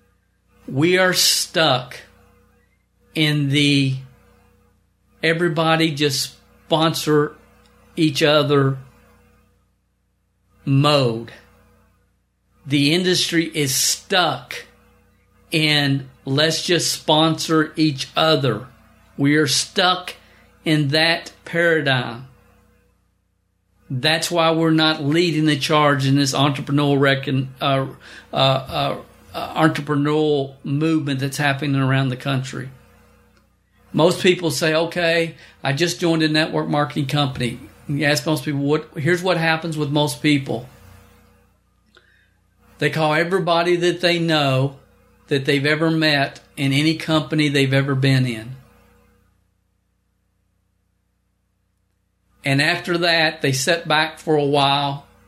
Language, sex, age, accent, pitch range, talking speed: English, male, 50-69, American, 100-155 Hz, 100 wpm